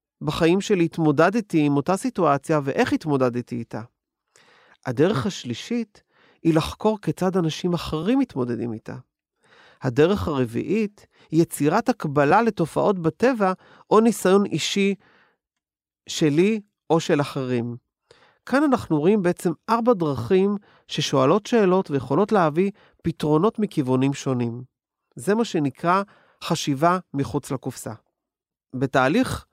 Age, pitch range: 40-59, 140-200 Hz